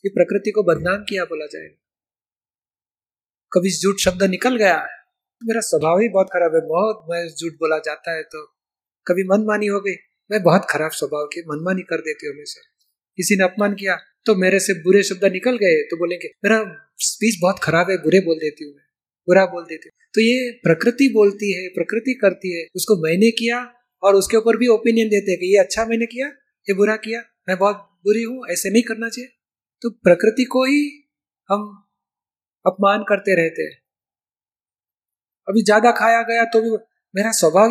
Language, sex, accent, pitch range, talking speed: Hindi, male, native, 185-230 Hz, 185 wpm